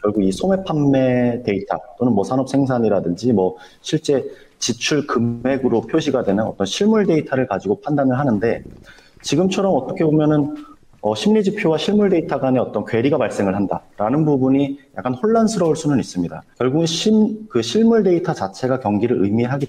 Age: 30-49